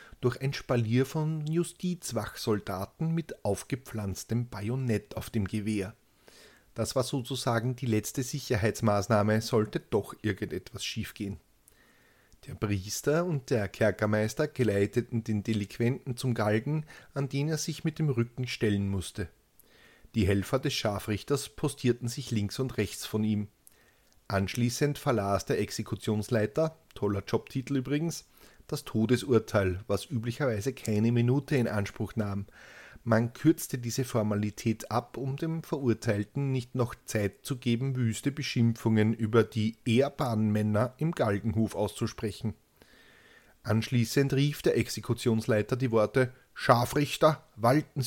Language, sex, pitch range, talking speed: German, male, 105-135 Hz, 120 wpm